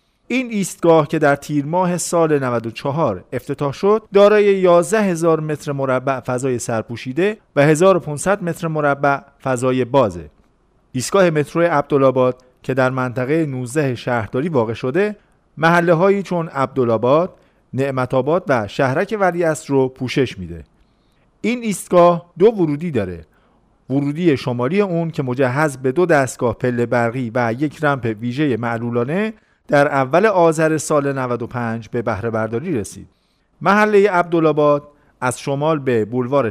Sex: male